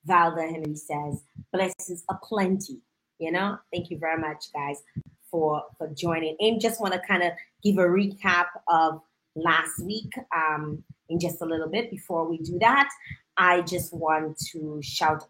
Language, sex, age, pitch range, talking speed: English, female, 20-39, 155-200 Hz, 170 wpm